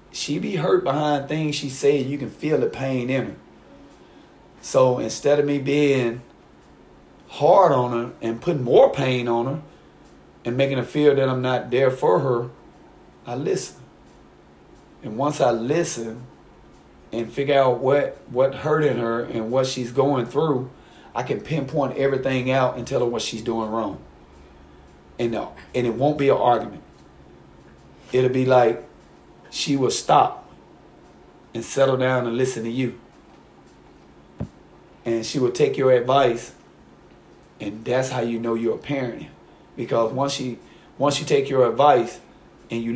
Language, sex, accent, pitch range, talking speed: English, male, American, 110-135 Hz, 160 wpm